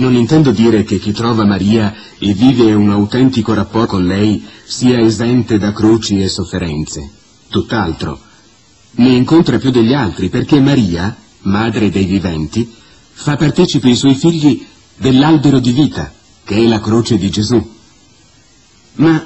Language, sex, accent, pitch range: Italian, male, native, 110-145 Hz